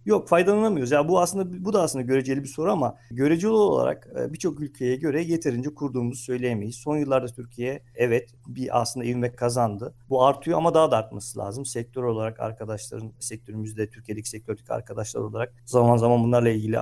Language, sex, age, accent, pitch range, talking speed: Turkish, male, 50-69, native, 115-145 Hz, 170 wpm